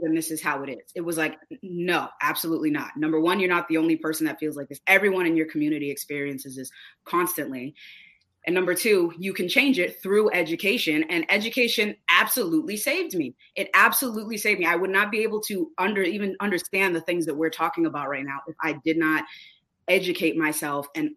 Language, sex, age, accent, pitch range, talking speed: English, female, 20-39, American, 155-185 Hz, 200 wpm